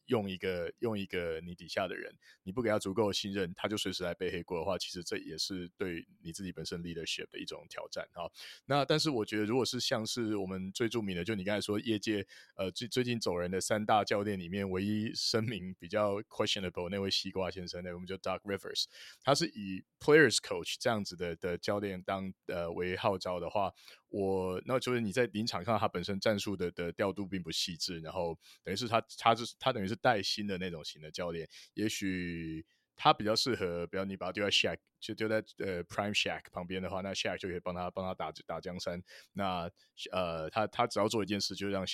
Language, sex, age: Chinese, male, 20-39